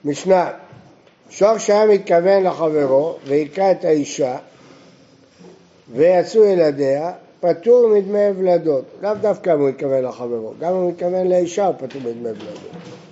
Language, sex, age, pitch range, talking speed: Hebrew, male, 60-79, 150-190 Hz, 125 wpm